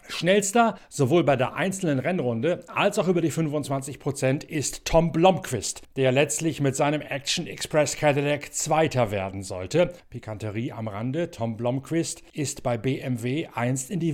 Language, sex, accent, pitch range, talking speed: German, male, German, 120-155 Hz, 150 wpm